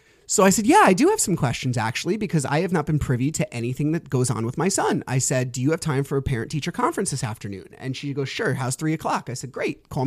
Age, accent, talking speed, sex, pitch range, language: 30-49, American, 280 wpm, male, 130-200 Hz, English